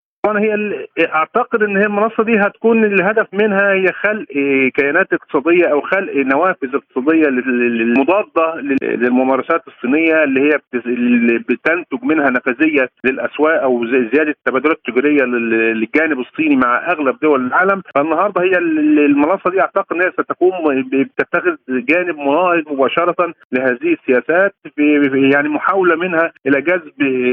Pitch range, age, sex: 135-175 Hz, 50-69, male